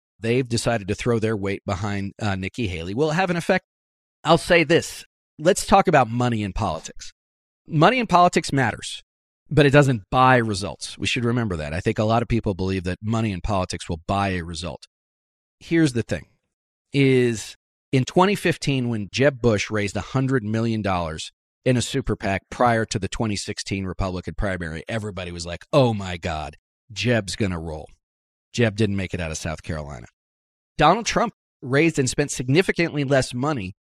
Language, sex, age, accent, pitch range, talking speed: English, male, 40-59, American, 90-130 Hz, 175 wpm